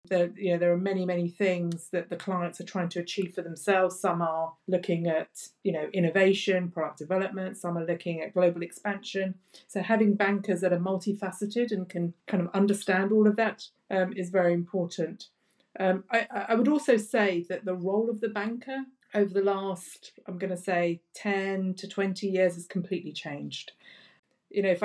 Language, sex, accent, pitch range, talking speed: English, female, British, 175-200 Hz, 185 wpm